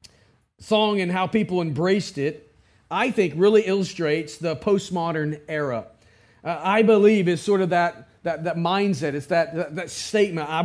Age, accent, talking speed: 40-59, American, 165 wpm